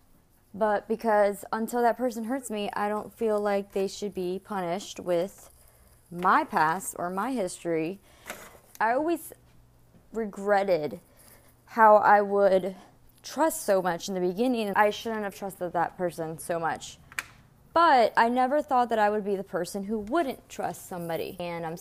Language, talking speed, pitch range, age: English, 155 wpm, 170-210 Hz, 20-39